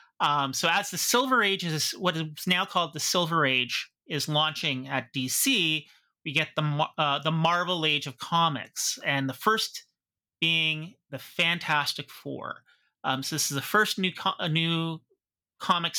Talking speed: 170 wpm